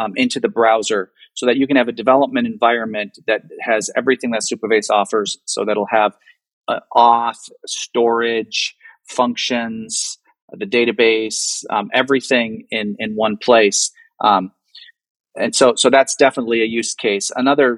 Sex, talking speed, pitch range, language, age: male, 140 wpm, 115-135 Hz, English, 30-49